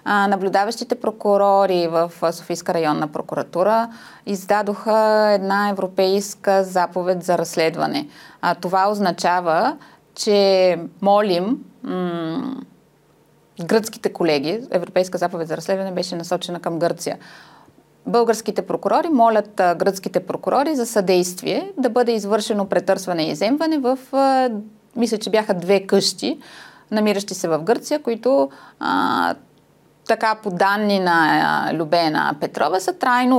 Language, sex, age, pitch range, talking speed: Bulgarian, female, 20-39, 180-230 Hz, 105 wpm